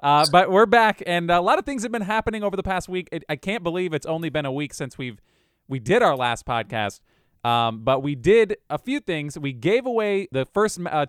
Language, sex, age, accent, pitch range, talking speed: English, male, 20-39, American, 130-180 Hz, 250 wpm